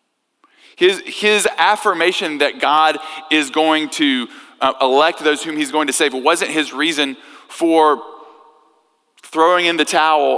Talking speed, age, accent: 135 wpm, 40-59, American